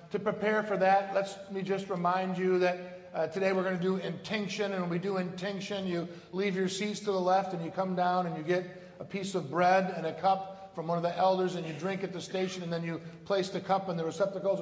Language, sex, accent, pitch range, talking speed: English, male, American, 170-200 Hz, 260 wpm